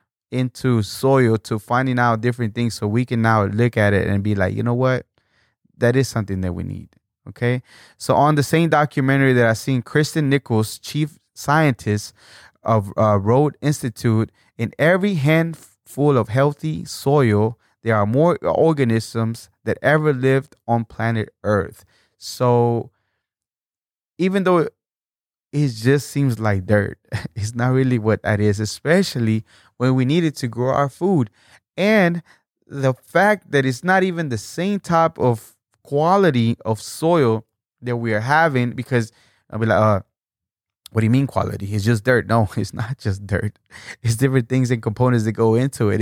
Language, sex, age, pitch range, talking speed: English, male, 20-39, 110-140 Hz, 165 wpm